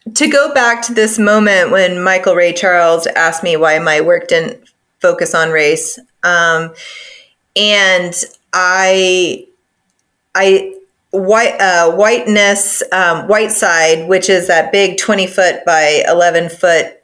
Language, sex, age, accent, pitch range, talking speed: English, female, 30-49, American, 180-240 Hz, 135 wpm